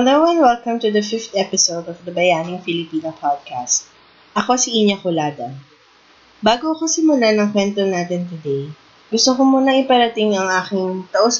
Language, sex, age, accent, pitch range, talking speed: English, female, 20-39, Filipino, 165-225 Hz, 160 wpm